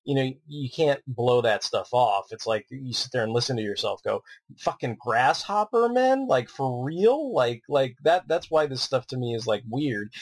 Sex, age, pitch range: male, 30-49, 120-145 Hz